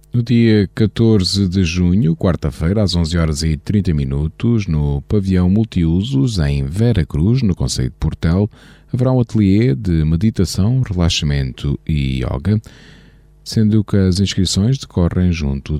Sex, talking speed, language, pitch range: male, 135 wpm, Portuguese, 80-110 Hz